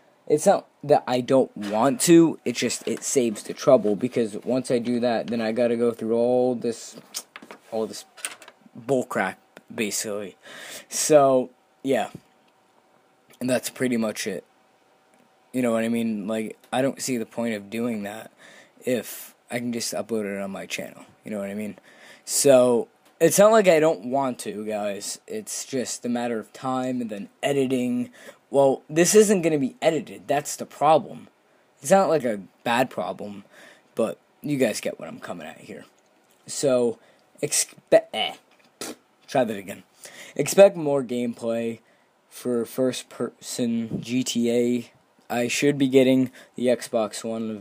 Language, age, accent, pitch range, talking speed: English, 20-39, American, 115-130 Hz, 160 wpm